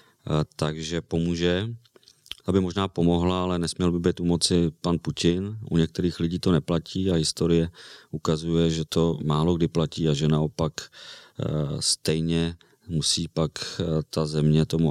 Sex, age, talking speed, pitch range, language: male, 30-49, 140 wpm, 75-85 Hz, Czech